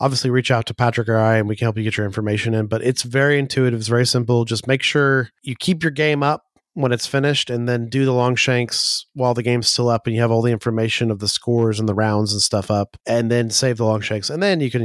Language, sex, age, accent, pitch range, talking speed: English, male, 30-49, American, 115-135 Hz, 285 wpm